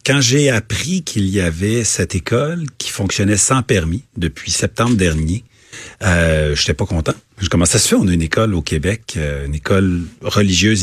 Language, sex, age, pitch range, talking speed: French, male, 40-59, 90-120 Hz, 175 wpm